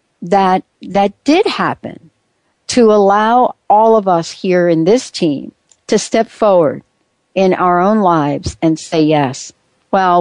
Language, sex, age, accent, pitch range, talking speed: English, female, 60-79, American, 155-210 Hz, 140 wpm